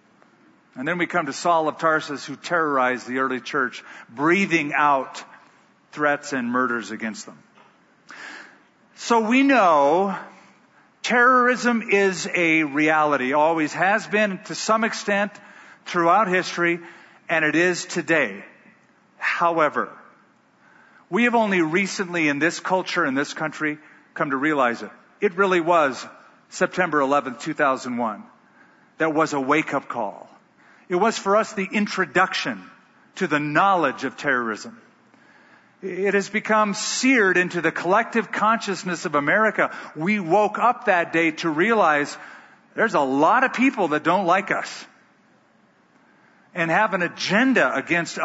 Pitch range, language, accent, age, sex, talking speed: 150-205 Hz, English, American, 50-69, male, 135 wpm